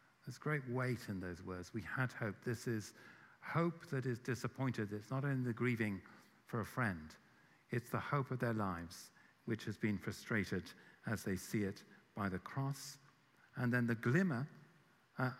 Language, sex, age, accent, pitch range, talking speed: English, male, 50-69, British, 105-135 Hz, 175 wpm